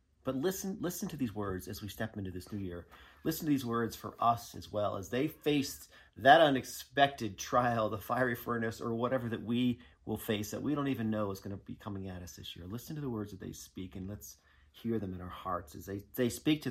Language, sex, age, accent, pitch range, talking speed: English, male, 40-59, American, 80-120 Hz, 250 wpm